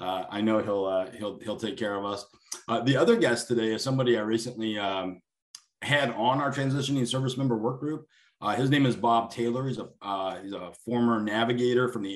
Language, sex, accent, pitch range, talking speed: English, male, American, 105-125 Hz, 215 wpm